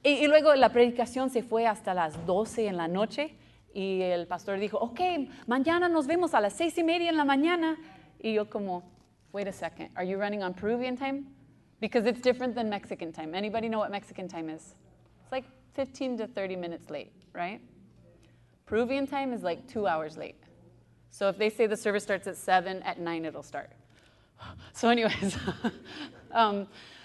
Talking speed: 185 wpm